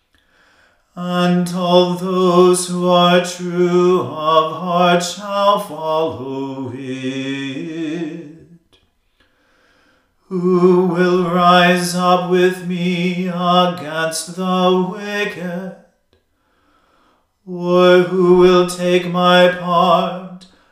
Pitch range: 160-180 Hz